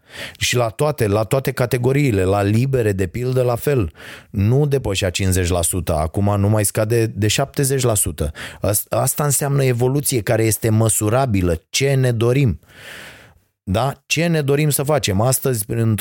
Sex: male